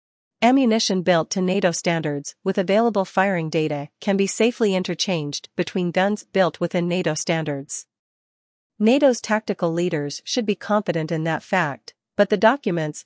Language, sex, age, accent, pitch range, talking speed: English, female, 40-59, American, 165-200 Hz, 140 wpm